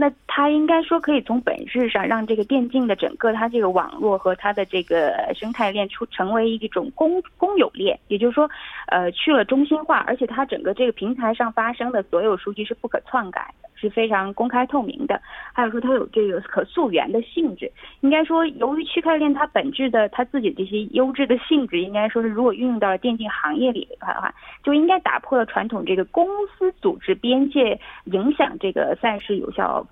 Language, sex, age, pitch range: Korean, female, 20-39, 215-285 Hz